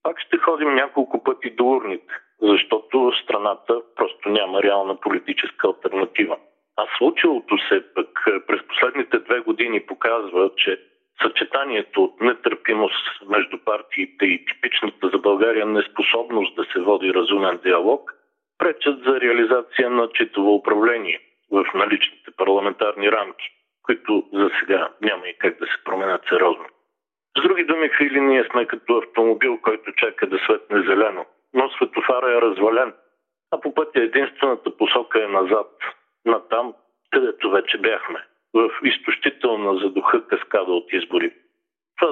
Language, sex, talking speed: Bulgarian, male, 135 wpm